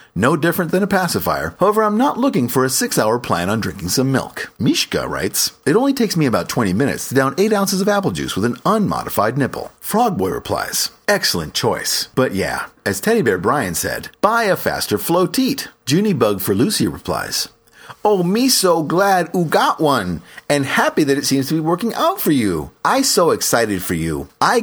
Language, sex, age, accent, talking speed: English, male, 40-59, American, 200 wpm